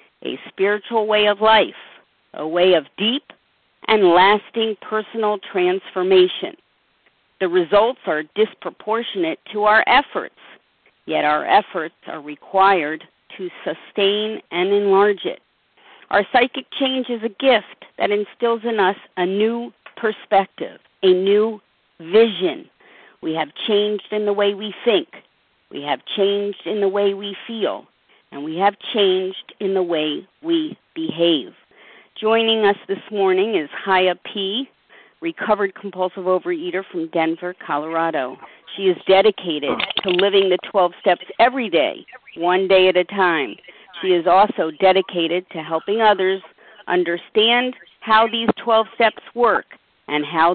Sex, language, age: female, English, 50-69